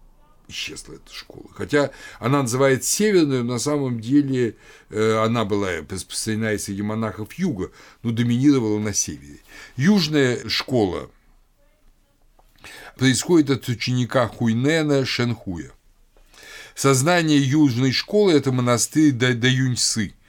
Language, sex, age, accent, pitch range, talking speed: Russian, male, 60-79, native, 110-145 Hz, 105 wpm